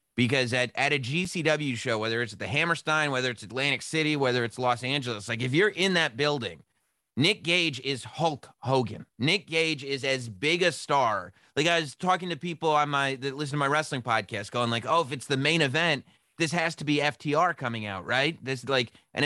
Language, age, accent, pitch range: English, 30-49, American, 120-160 Hz